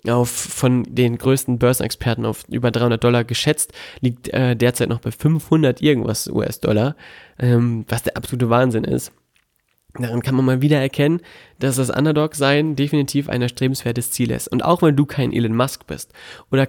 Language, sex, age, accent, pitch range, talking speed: German, male, 20-39, German, 125-145 Hz, 170 wpm